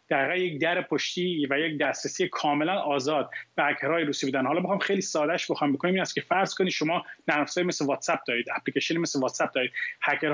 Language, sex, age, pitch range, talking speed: Persian, male, 30-49, 145-170 Hz, 205 wpm